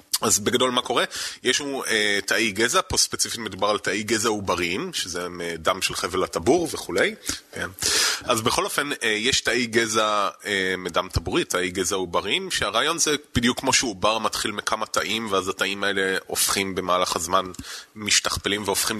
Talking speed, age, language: 165 wpm, 20-39, Hebrew